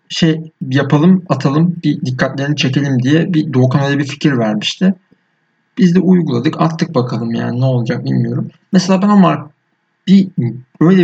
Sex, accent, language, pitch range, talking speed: male, native, Turkish, 125-170 Hz, 150 wpm